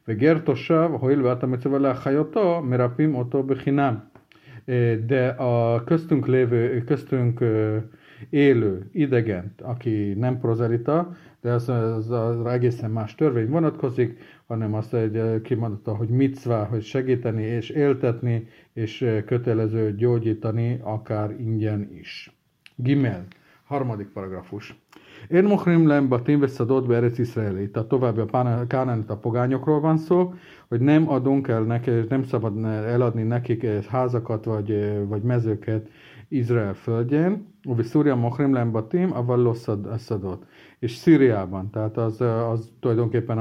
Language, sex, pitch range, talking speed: Hungarian, male, 110-135 Hz, 120 wpm